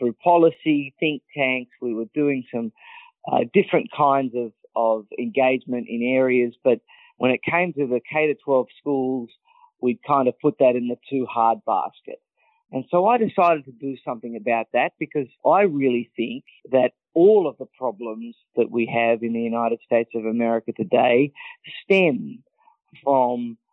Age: 40-59